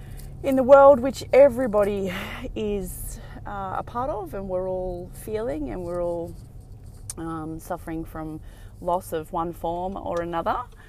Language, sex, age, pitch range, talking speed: English, female, 20-39, 110-180 Hz, 145 wpm